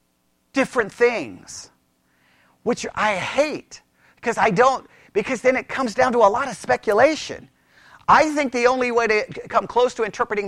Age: 40-59